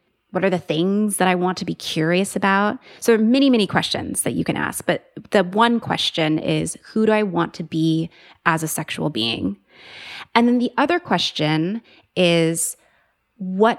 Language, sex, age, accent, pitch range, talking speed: English, female, 20-39, American, 165-195 Hz, 185 wpm